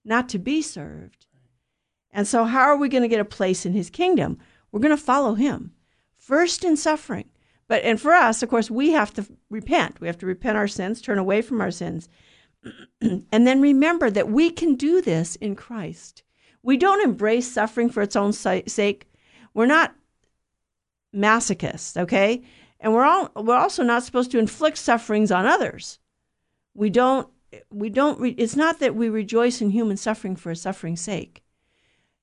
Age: 50-69